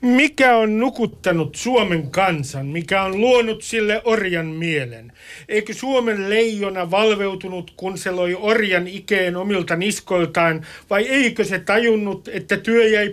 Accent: native